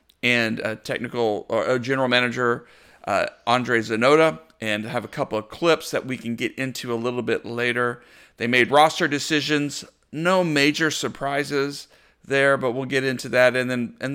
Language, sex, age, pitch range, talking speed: English, male, 40-59, 120-150 Hz, 165 wpm